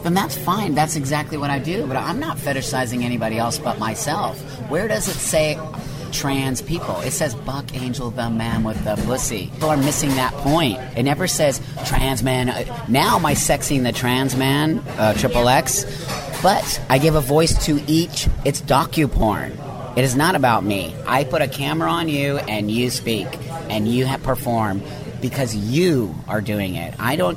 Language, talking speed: English, 185 wpm